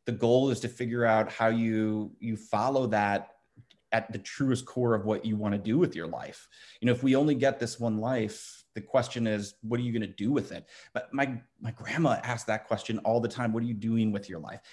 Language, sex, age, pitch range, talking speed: English, male, 30-49, 110-120 Hz, 240 wpm